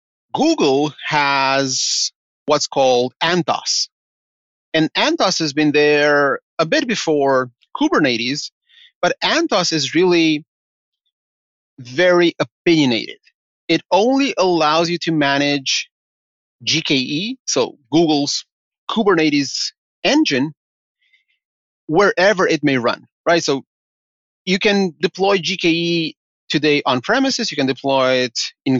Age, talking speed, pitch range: 30-49, 100 wpm, 130-180 Hz